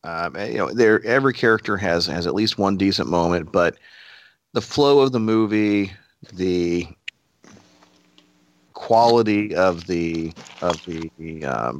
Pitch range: 80-100 Hz